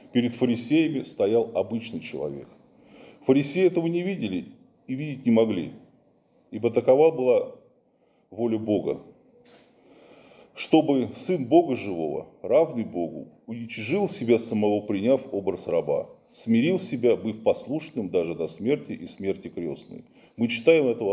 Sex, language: male, Russian